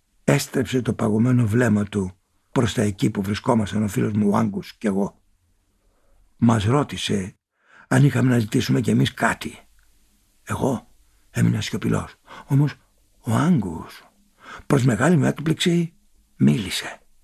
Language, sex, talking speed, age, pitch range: Greek, male, 125 wpm, 60-79, 105-155 Hz